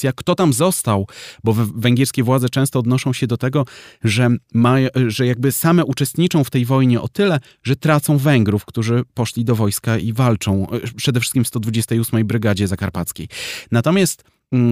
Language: Polish